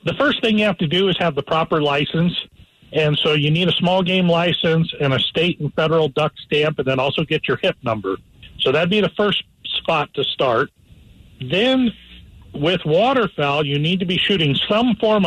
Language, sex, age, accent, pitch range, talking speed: English, male, 40-59, American, 140-190 Hz, 205 wpm